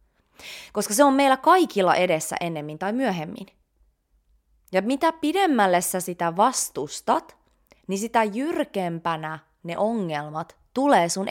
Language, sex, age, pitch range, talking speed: Finnish, female, 20-39, 155-230 Hz, 115 wpm